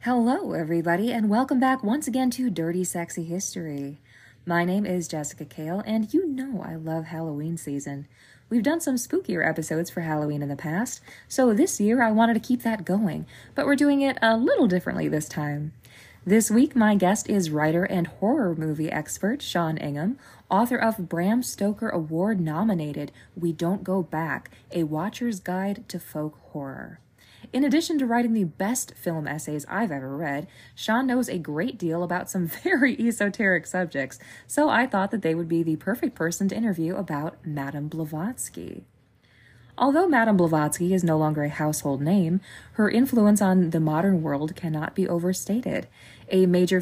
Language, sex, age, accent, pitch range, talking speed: English, female, 20-39, American, 155-220 Hz, 175 wpm